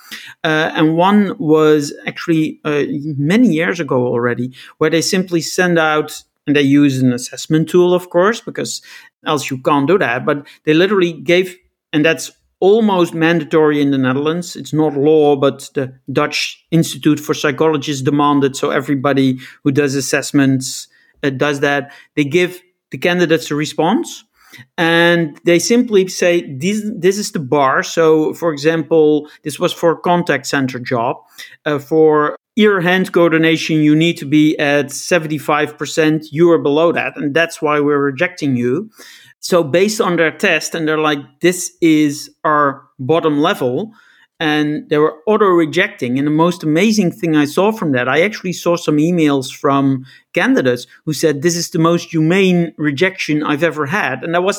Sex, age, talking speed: male, 50-69, 165 wpm